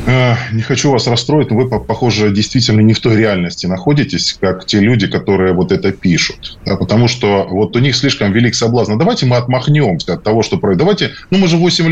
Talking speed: 200 wpm